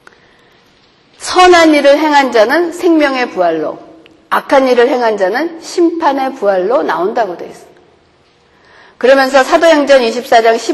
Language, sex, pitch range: Korean, female, 215-325 Hz